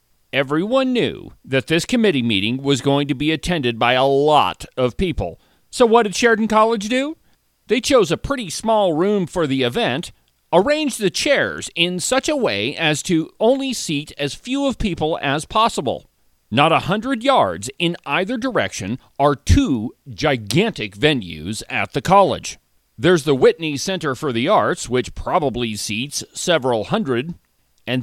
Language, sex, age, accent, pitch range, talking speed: English, male, 40-59, American, 125-200 Hz, 160 wpm